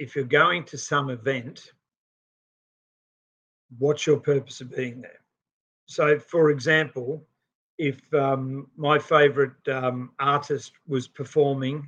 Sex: male